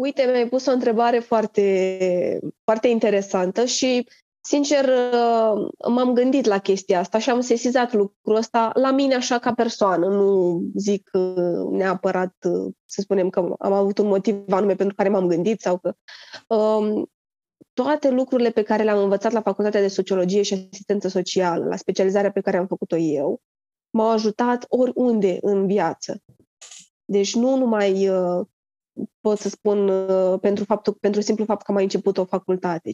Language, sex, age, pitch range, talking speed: Romanian, female, 20-39, 200-245 Hz, 155 wpm